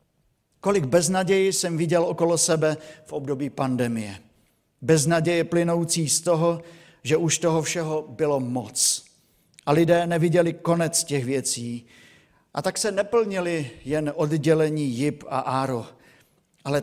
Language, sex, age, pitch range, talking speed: Czech, male, 50-69, 135-170 Hz, 125 wpm